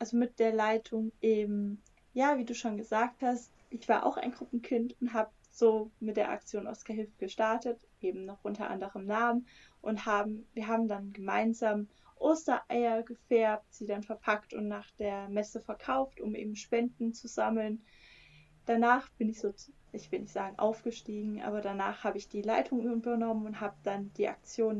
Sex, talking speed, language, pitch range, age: female, 170 wpm, German, 210-240 Hz, 20-39